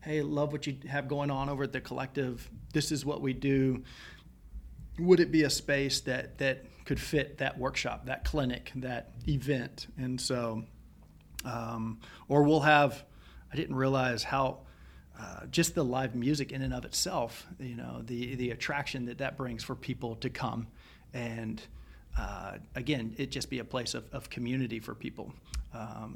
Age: 40-59